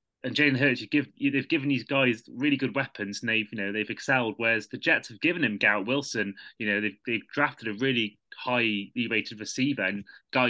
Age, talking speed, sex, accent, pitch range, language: 30-49, 225 wpm, male, British, 110-150 Hz, English